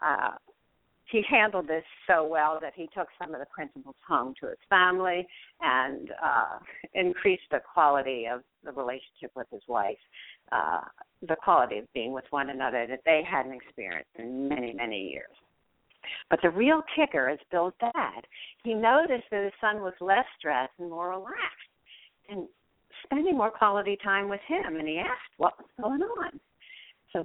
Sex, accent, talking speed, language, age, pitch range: female, American, 170 wpm, English, 50-69, 160-235 Hz